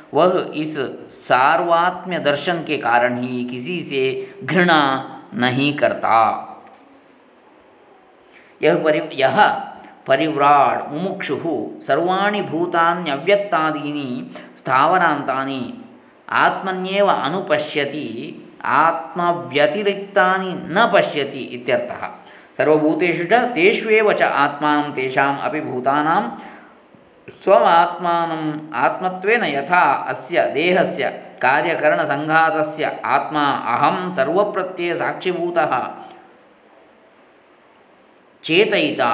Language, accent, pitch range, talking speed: Kannada, native, 145-180 Hz, 55 wpm